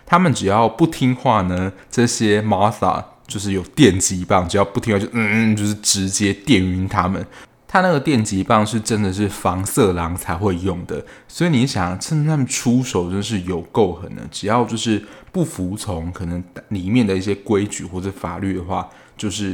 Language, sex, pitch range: Chinese, male, 90-120 Hz